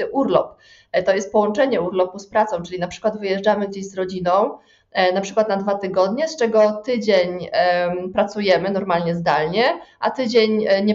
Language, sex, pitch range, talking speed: Polish, female, 180-215 Hz, 155 wpm